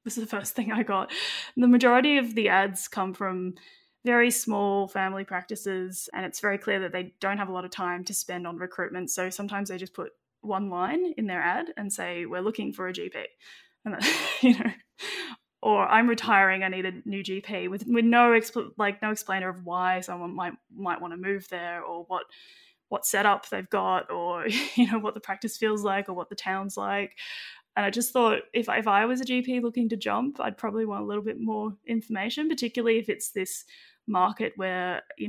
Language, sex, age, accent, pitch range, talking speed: English, female, 10-29, Australian, 185-230 Hz, 210 wpm